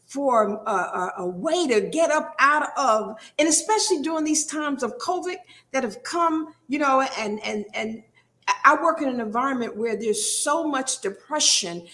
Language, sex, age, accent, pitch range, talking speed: English, female, 50-69, American, 225-325 Hz, 175 wpm